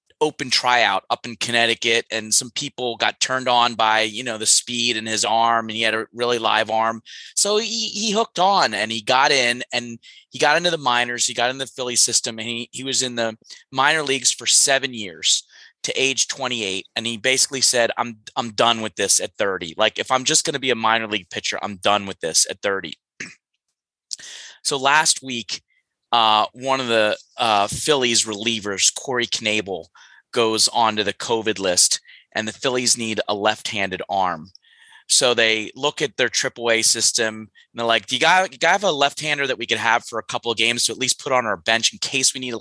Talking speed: 215 wpm